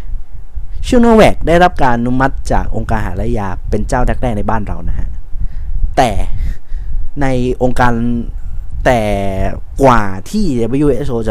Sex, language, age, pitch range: male, Thai, 20-39, 90-130 Hz